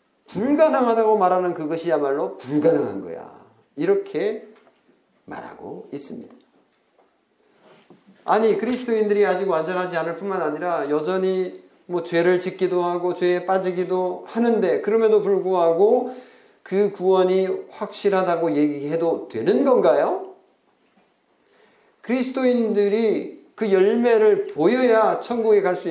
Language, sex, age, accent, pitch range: Korean, male, 50-69, native, 170-240 Hz